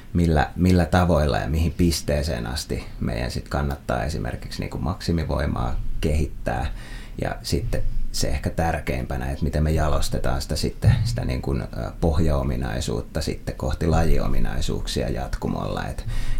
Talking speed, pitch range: 115 wpm, 65-85 Hz